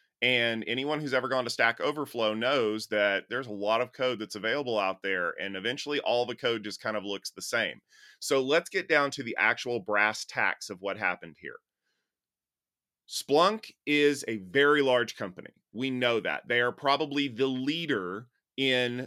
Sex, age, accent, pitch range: male, 30-49, American, 110-135 Hz